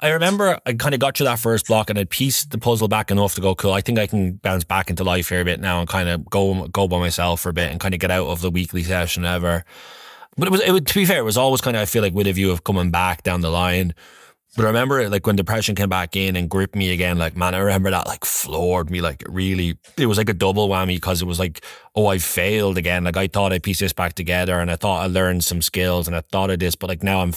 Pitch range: 90-105 Hz